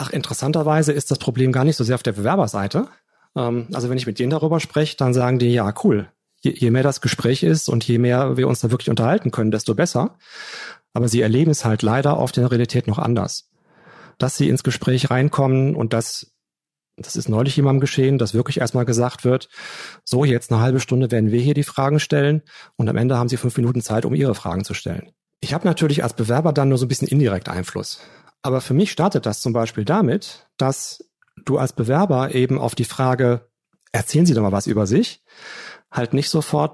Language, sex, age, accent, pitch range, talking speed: German, male, 40-59, German, 120-145 Hz, 210 wpm